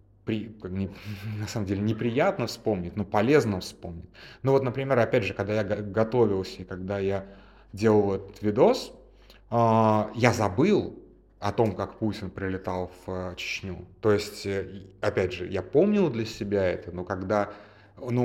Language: Russian